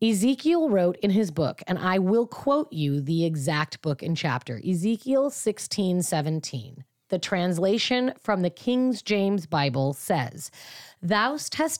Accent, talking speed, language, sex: American, 140 wpm, English, female